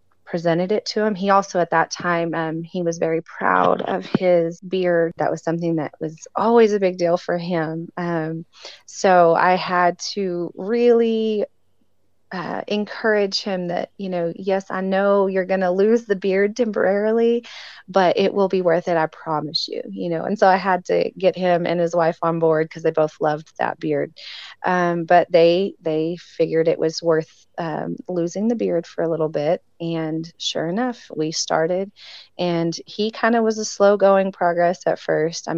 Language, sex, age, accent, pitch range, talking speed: English, female, 30-49, American, 160-185 Hz, 190 wpm